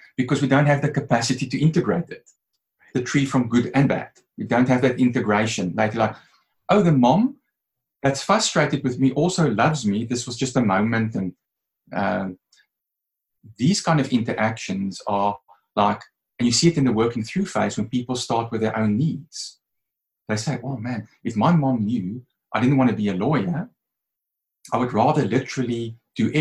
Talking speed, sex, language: 185 wpm, male, English